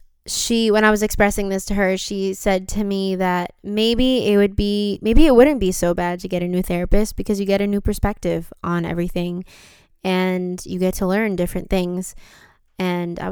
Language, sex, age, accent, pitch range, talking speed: English, female, 10-29, American, 180-225 Hz, 205 wpm